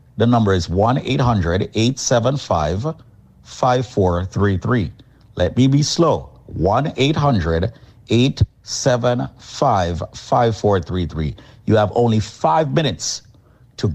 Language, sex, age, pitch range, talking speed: English, male, 50-69, 95-125 Hz, 65 wpm